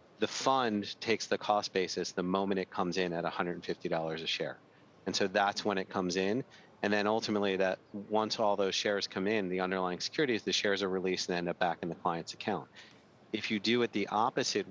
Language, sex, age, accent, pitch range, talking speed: English, male, 30-49, American, 95-105 Hz, 215 wpm